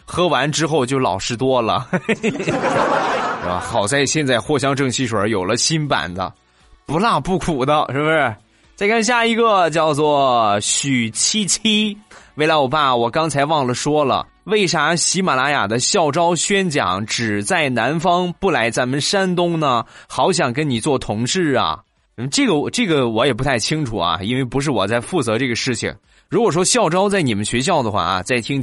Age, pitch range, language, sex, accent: 20-39, 120-170 Hz, Chinese, male, native